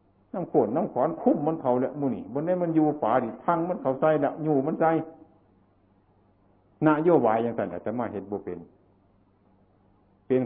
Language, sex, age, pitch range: Thai, male, 60-79, 100-140 Hz